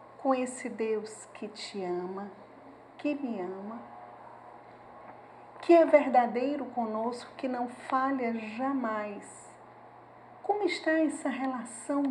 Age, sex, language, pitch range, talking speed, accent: 50-69, female, Portuguese, 215-285 Hz, 105 wpm, Brazilian